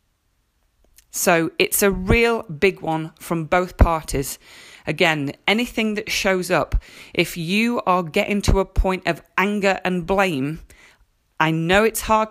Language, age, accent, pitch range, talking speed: English, 40-59, British, 165-220 Hz, 140 wpm